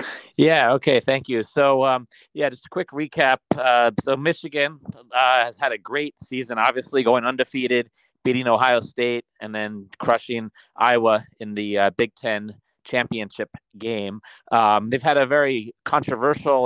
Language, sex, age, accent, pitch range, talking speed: English, male, 30-49, American, 105-135 Hz, 155 wpm